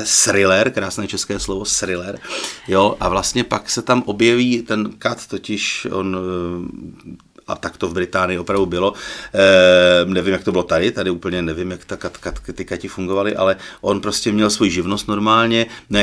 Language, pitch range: Czech, 95-120 Hz